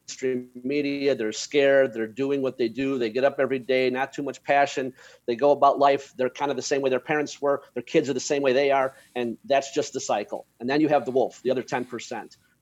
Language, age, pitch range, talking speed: English, 40-59, 125-150 Hz, 250 wpm